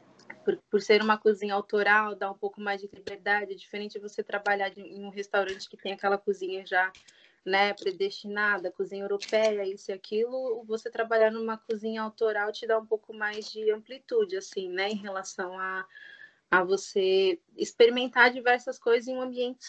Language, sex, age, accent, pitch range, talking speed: Portuguese, female, 20-39, Brazilian, 200-230 Hz, 170 wpm